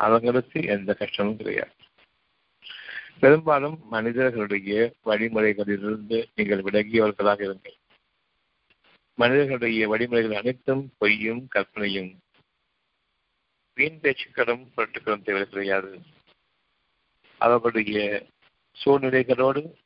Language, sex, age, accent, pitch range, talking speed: Tamil, male, 50-69, native, 100-120 Hz, 60 wpm